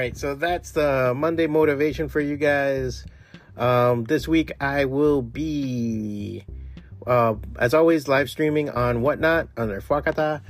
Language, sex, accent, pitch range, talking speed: English, male, American, 115-150 Hz, 135 wpm